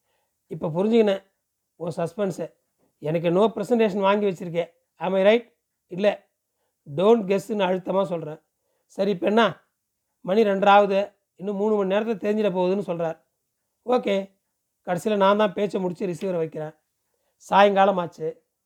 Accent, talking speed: native, 120 wpm